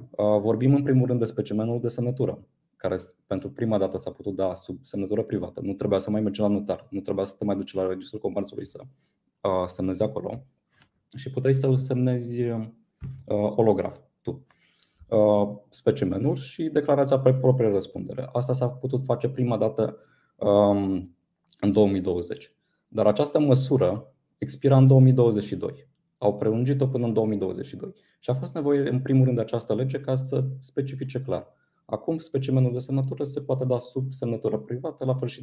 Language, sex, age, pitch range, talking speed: Romanian, male, 20-39, 100-130 Hz, 160 wpm